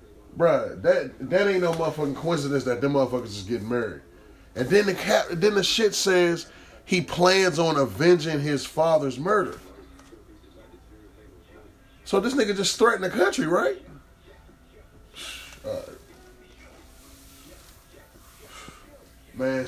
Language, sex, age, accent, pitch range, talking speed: English, male, 30-49, American, 130-185 Hz, 115 wpm